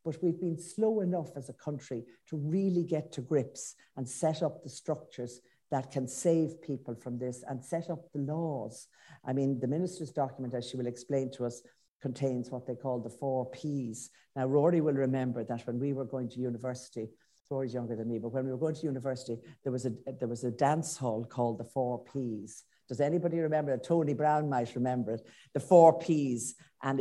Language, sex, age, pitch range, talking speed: English, female, 60-79, 120-145 Hz, 200 wpm